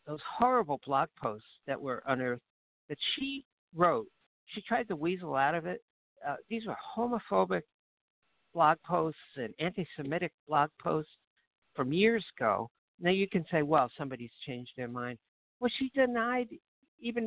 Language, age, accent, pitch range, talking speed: English, 60-79, American, 135-195 Hz, 150 wpm